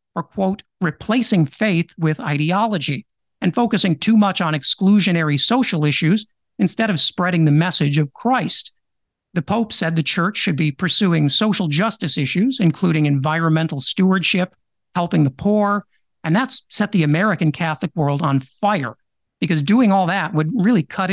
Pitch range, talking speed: 155-195 Hz, 155 wpm